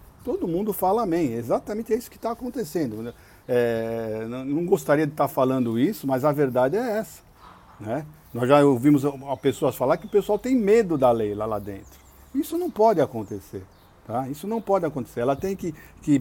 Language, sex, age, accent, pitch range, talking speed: Portuguese, male, 50-69, Brazilian, 130-180 Hz, 180 wpm